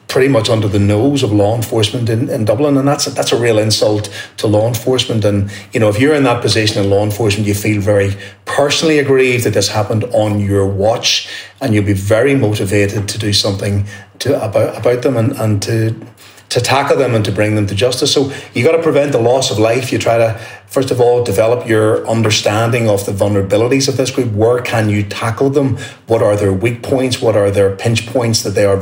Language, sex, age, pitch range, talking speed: English, male, 30-49, 105-130 Hz, 225 wpm